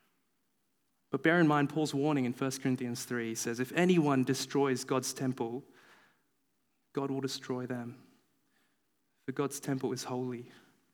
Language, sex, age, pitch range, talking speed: English, male, 20-39, 125-160 Hz, 135 wpm